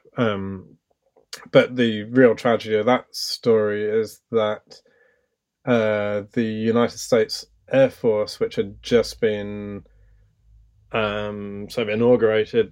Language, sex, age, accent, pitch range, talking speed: English, male, 20-39, British, 100-120 Hz, 105 wpm